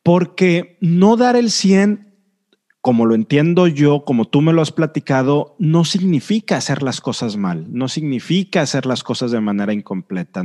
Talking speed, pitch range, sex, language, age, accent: 165 wpm, 125-180 Hz, male, Spanish, 40-59, Mexican